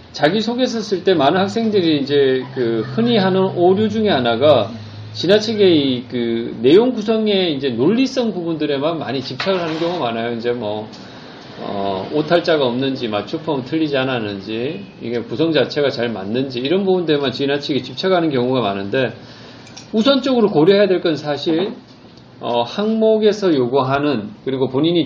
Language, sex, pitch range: Korean, male, 130-195 Hz